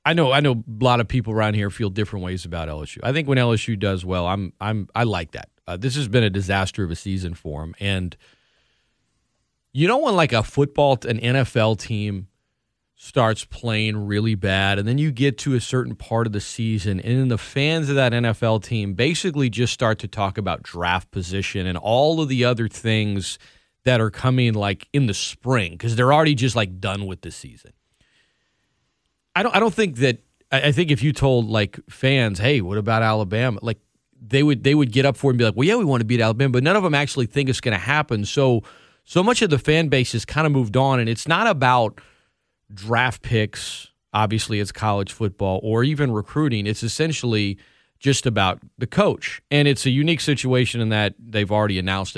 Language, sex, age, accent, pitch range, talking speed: English, male, 30-49, American, 105-135 Hz, 215 wpm